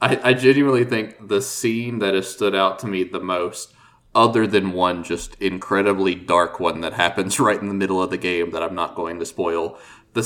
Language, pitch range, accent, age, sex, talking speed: English, 90-105 Hz, American, 20-39, male, 210 wpm